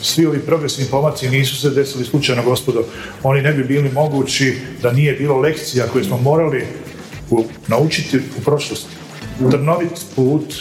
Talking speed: 165 wpm